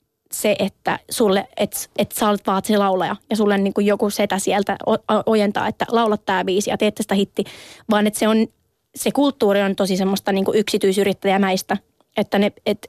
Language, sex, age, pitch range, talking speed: Finnish, female, 20-39, 195-220 Hz, 170 wpm